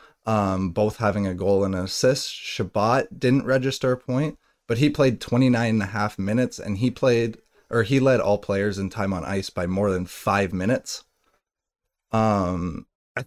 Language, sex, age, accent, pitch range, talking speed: English, male, 20-39, American, 95-120 Hz, 170 wpm